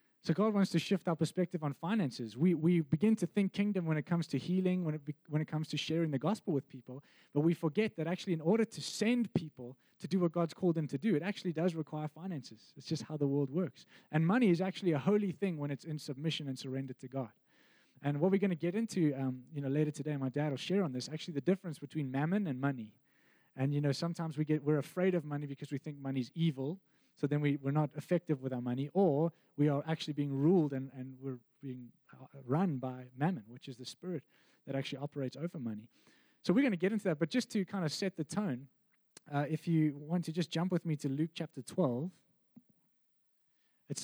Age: 20-39